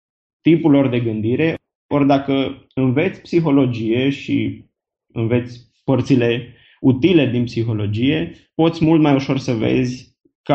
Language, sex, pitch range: Romanian, male, 125-150 Hz